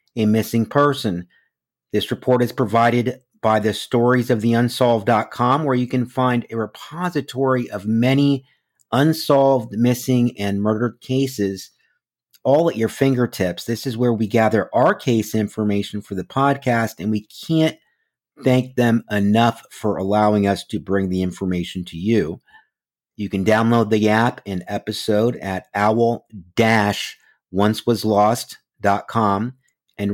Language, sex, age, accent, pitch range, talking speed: English, male, 50-69, American, 105-125 Hz, 130 wpm